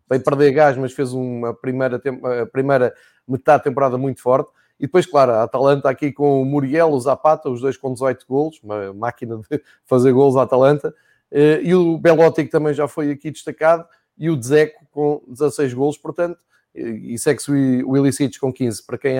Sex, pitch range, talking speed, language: male, 135-180 Hz, 195 wpm, Portuguese